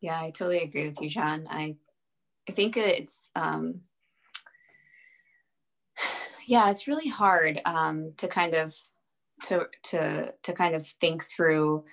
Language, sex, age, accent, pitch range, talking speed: English, female, 20-39, American, 150-180 Hz, 135 wpm